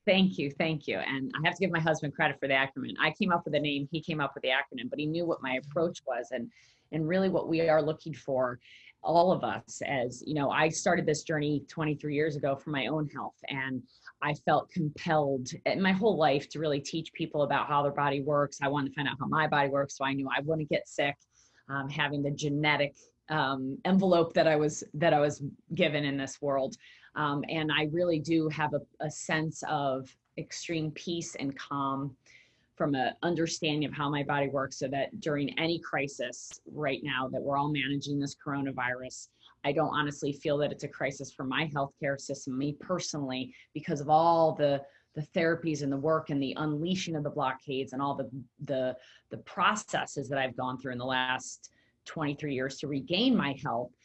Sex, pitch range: female, 135-160 Hz